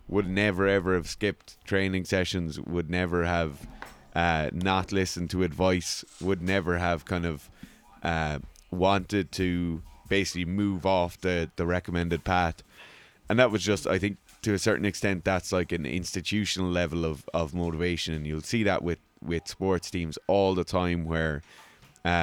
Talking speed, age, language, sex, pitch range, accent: 165 wpm, 20-39, English, male, 85-95 Hz, Irish